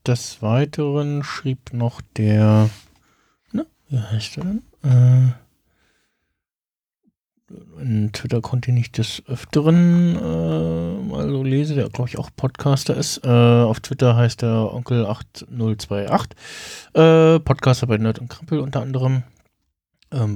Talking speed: 125 wpm